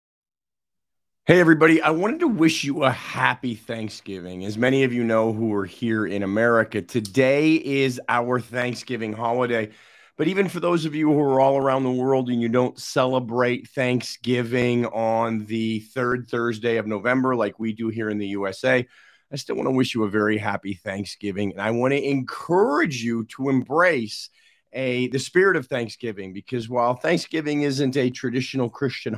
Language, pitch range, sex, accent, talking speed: English, 110-135 Hz, male, American, 175 wpm